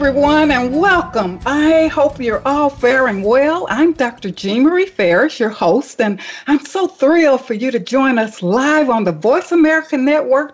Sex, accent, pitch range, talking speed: female, American, 190-285 Hz, 170 wpm